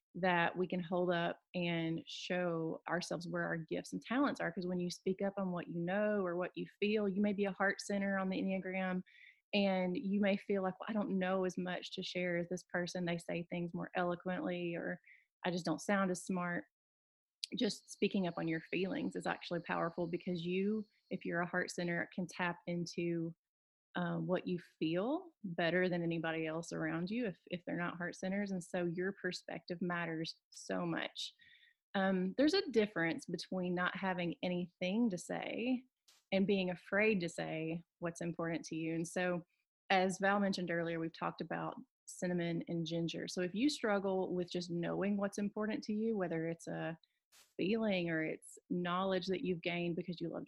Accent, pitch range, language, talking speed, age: American, 170-195 Hz, English, 190 wpm, 30-49